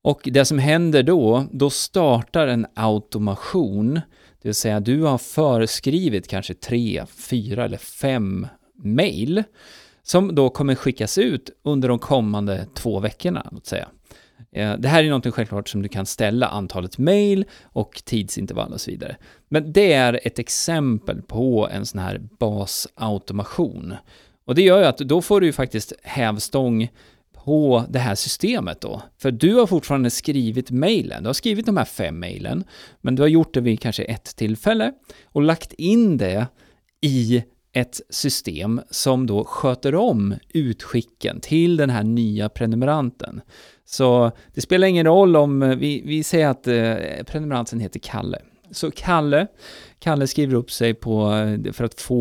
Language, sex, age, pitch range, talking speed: Swedish, male, 30-49, 110-145 Hz, 155 wpm